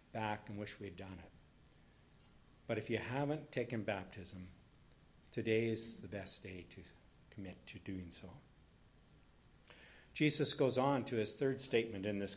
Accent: American